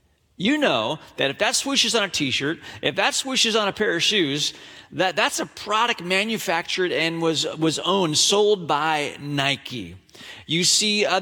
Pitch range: 155-210 Hz